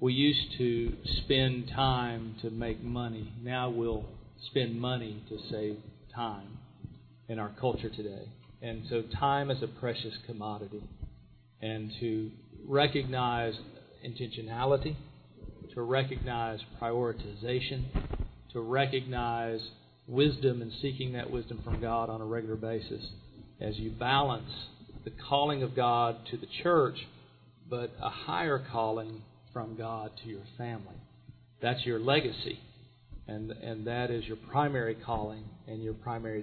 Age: 40-59